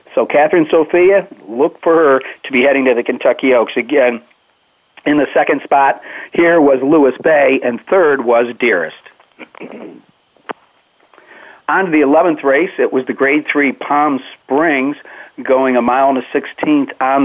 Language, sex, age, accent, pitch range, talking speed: English, male, 50-69, American, 125-150 Hz, 155 wpm